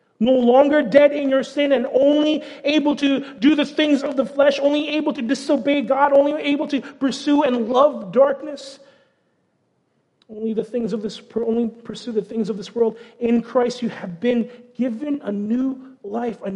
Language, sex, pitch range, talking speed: English, male, 205-255 Hz, 180 wpm